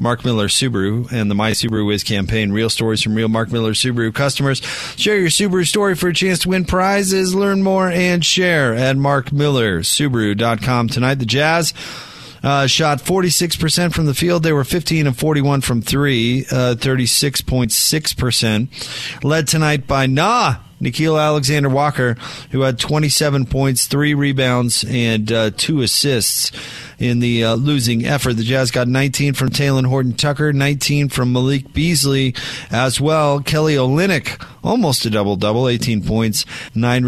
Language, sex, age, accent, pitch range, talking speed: English, male, 30-49, American, 120-155 Hz, 155 wpm